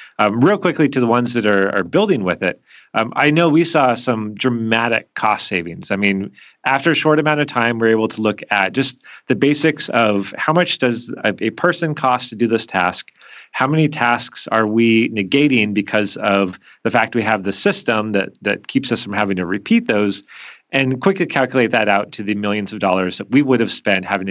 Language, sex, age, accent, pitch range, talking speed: English, male, 30-49, American, 100-135 Hz, 220 wpm